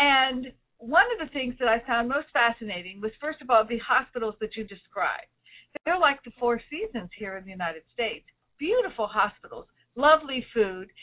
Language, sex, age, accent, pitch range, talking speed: English, female, 50-69, American, 230-295 Hz, 180 wpm